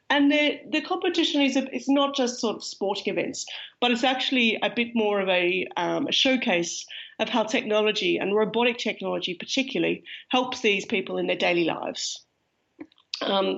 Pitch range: 205-280 Hz